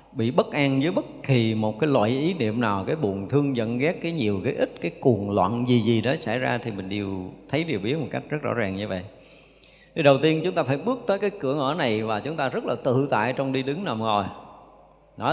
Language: Vietnamese